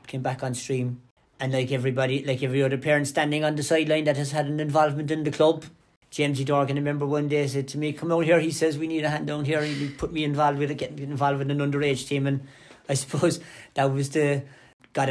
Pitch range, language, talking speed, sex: 130-145 Hz, English, 245 wpm, male